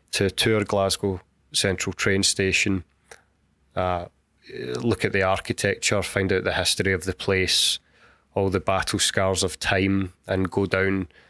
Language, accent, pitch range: English, British, 95-105 Hz